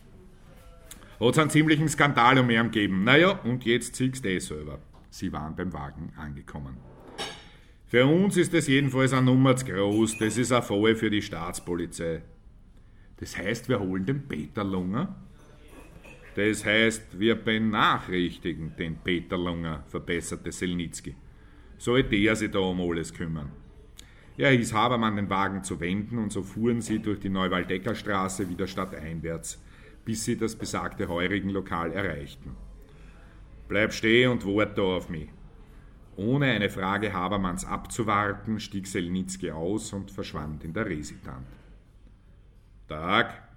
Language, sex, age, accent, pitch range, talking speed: German, male, 50-69, Austrian, 90-115 Hz, 140 wpm